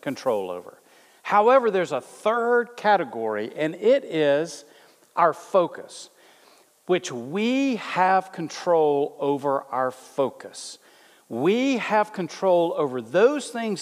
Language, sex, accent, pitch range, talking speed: English, male, American, 150-210 Hz, 110 wpm